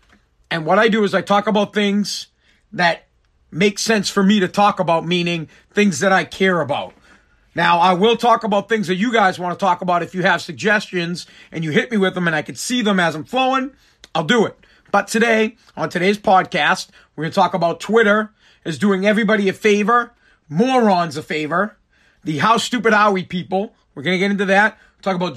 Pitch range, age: 180-225 Hz, 40-59